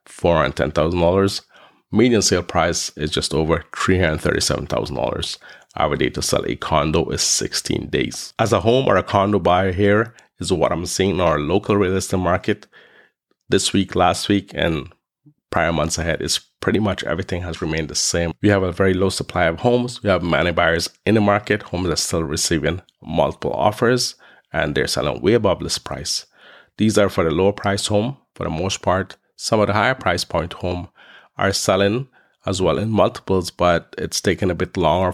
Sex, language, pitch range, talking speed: male, English, 80-100 Hz, 200 wpm